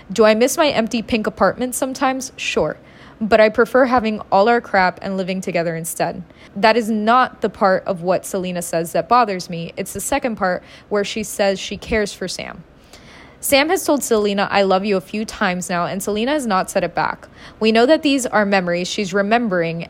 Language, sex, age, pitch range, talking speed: English, female, 20-39, 185-240 Hz, 210 wpm